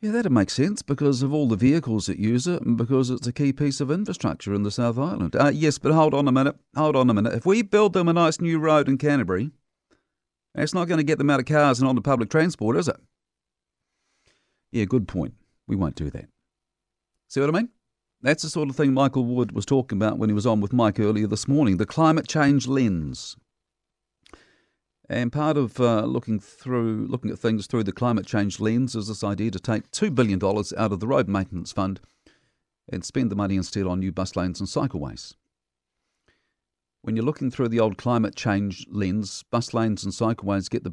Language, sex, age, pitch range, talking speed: English, male, 50-69, 100-140 Hz, 215 wpm